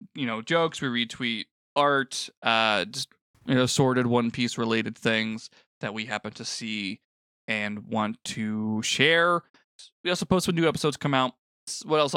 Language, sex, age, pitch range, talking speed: English, male, 20-39, 115-140 Hz, 170 wpm